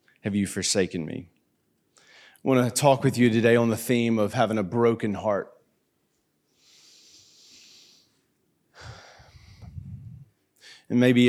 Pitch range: 110-120 Hz